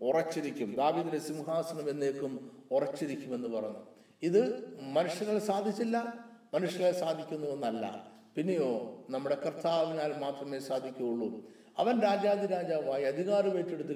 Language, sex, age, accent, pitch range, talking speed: Malayalam, male, 50-69, native, 135-195 Hz, 90 wpm